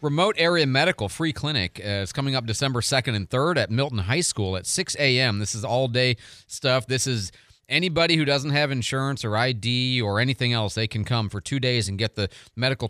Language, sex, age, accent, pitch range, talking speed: English, male, 40-59, American, 105-135 Hz, 215 wpm